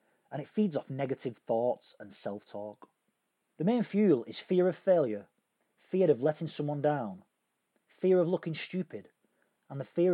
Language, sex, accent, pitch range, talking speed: English, male, British, 130-165 Hz, 160 wpm